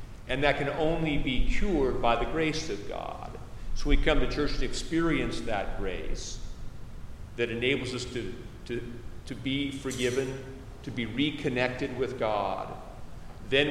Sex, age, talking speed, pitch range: male, 50-69, 145 wpm, 115-135 Hz